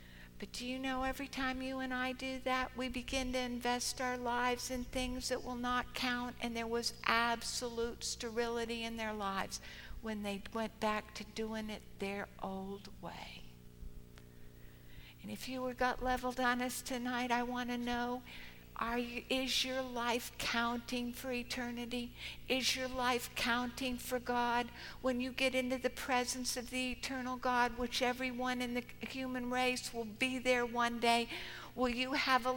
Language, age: English, 60-79